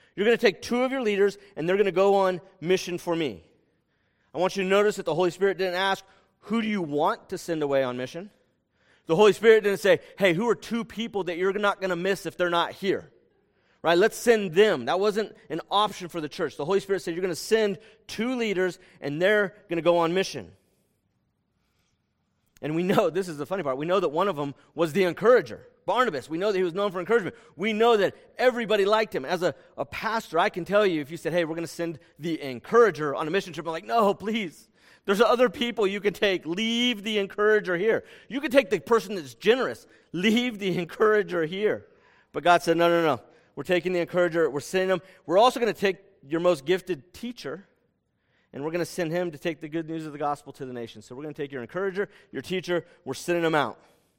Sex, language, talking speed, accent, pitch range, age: male, English, 240 wpm, American, 165-210 Hz, 40-59